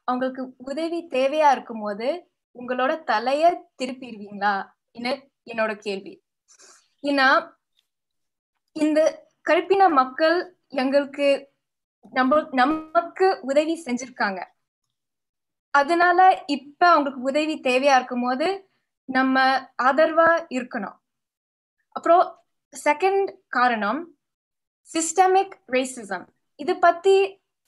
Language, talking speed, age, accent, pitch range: Tamil, 65 wpm, 20-39, native, 255-325 Hz